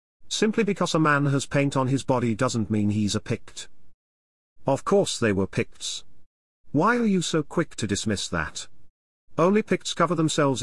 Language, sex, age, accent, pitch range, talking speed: English, male, 40-59, British, 105-145 Hz, 175 wpm